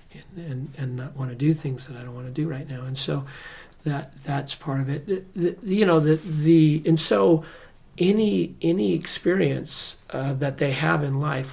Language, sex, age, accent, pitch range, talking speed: English, male, 40-59, American, 135-160 Hz, 210 wpm